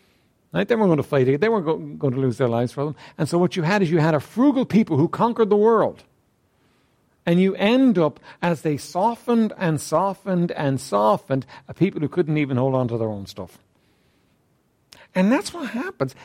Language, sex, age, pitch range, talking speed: English, male, 60-79, 135-205 Hz, 205 wpm